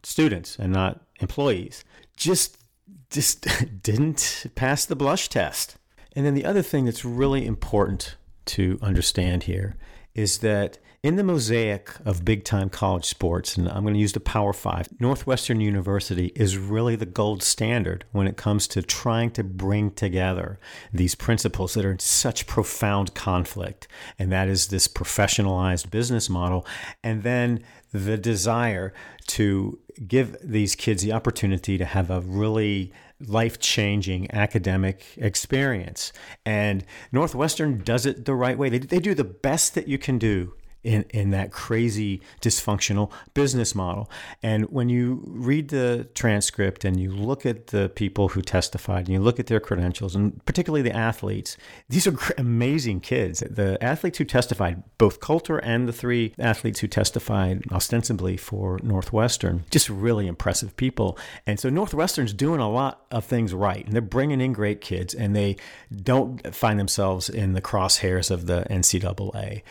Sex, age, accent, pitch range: male, 50-69, American, 95-125 Hz